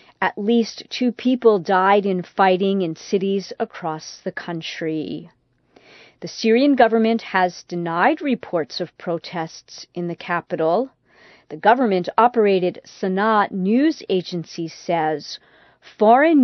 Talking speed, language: 110 wpm, English